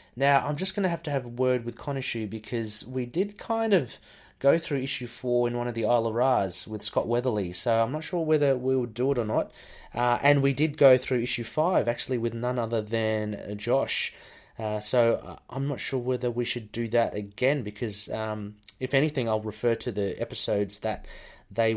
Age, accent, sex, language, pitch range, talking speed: 30-49, Australian, male, English, 110-140 Hz, 220 wpm